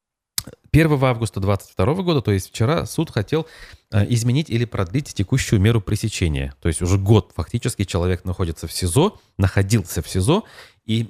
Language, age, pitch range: Russian, 30-49, 95-130 Hz